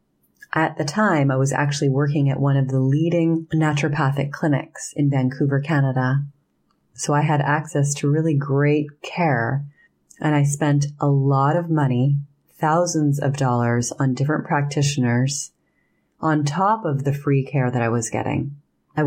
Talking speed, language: 155 wpm, English